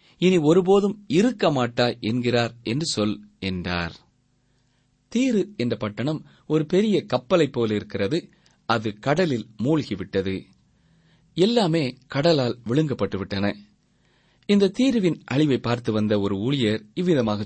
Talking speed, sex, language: 100 wpm, male, Tamil